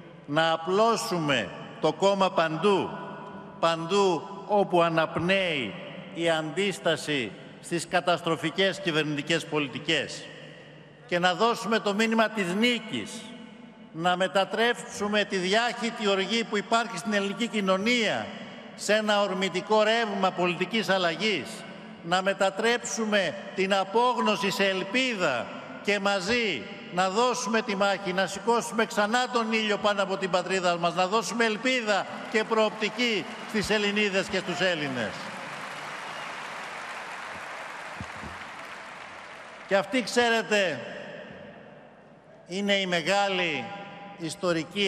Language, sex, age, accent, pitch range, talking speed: Greek, male, 60-79, native, 170-215 Hz, 100 wpm